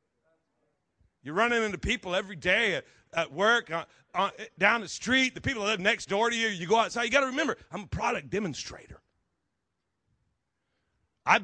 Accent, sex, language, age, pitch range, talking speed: American, male, English, 40-59, 150-195 Hz, 180 wpm